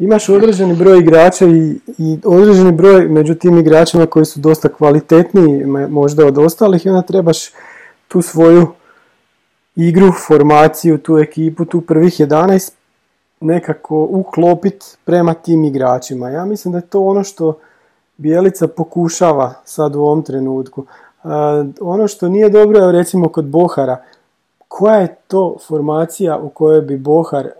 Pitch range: 150-185 Hz